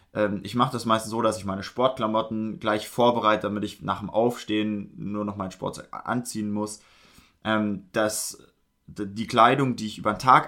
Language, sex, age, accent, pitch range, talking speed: German, male, 20-39, German, 100-115 Hz, 180 wpm